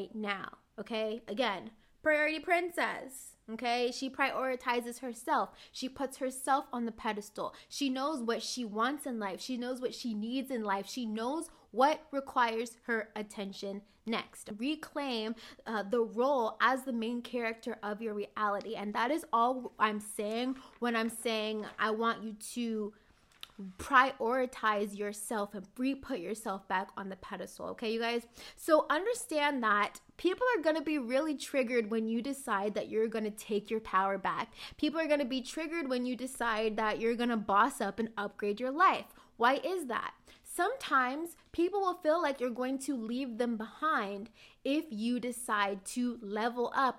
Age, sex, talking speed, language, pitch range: 20-39, female, 170 wpm, English, 220-270 Hz